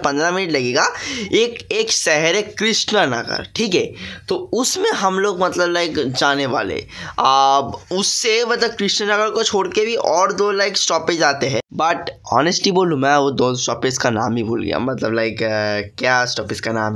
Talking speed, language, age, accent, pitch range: 140 wpm, Hindi, 10-29, native, 125-195 Hz